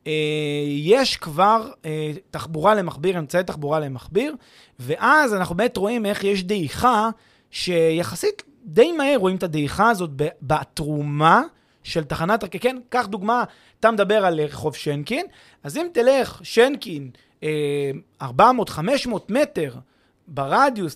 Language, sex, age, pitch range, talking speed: Hebrew, male, 30-49, 155-230 Hz, 110 wpm